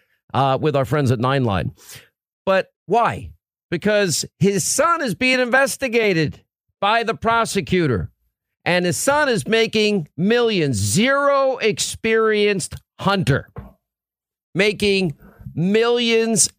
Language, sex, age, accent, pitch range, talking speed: English, male, 50-69, American, 170-215 Hz, 105 wpm